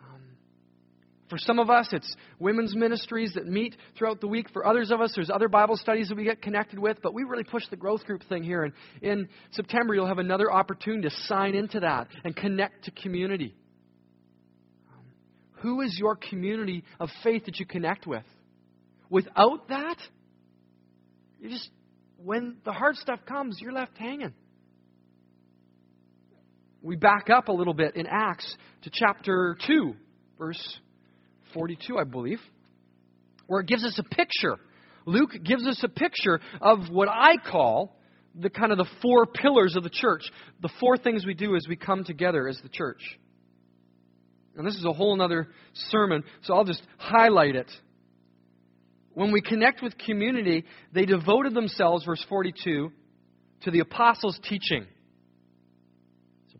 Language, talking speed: English, 160 wpm